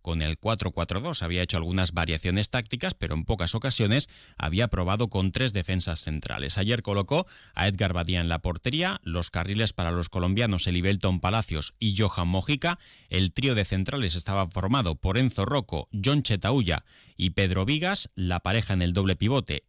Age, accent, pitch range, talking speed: 30-49, Spanish, 90-115 Hz, 170 wpm